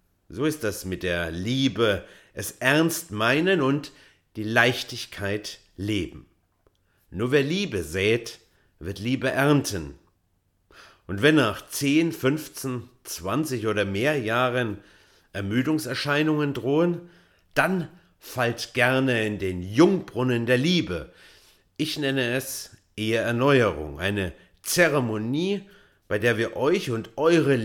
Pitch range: 95-135 Hz